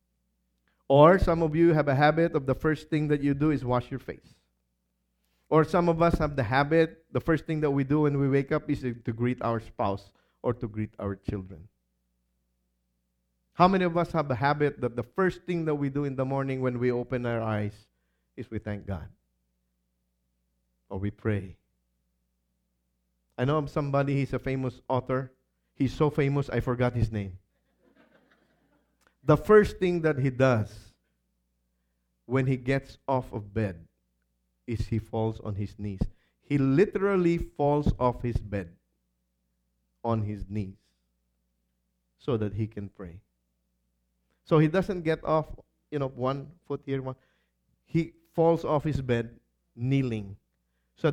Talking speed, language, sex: 165 wpm, English, male